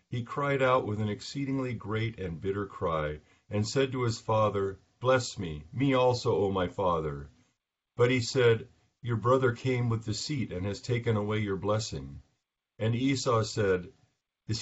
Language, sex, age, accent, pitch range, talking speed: English, male, 50-69, American, 95-120 Hz, 165 wpm